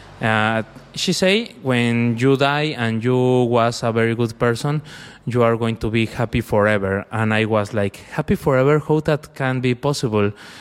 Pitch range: 105-130 Hz